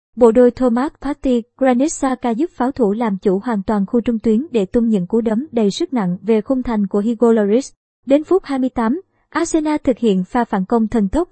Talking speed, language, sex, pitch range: 210 wpm, Vietnamese, male, 220-265 Hz